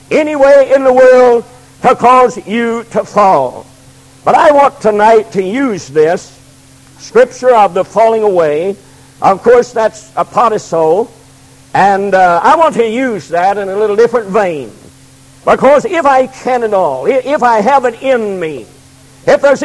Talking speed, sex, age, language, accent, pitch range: 170 wpm, male, 60-79, English, American, 185-270 Hz